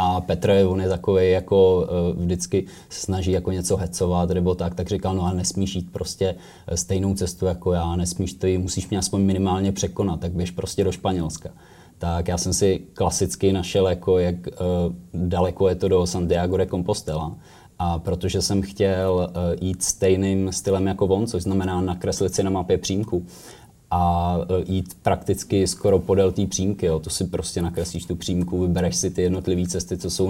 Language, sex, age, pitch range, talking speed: Czech, male, 20-39, 90-95 Hz, 175 wpm